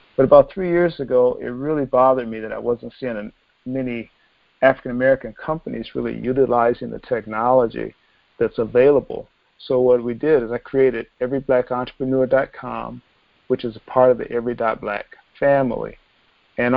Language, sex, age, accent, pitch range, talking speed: English, male, 50-69, American, 120-140 Hz, 145 wpm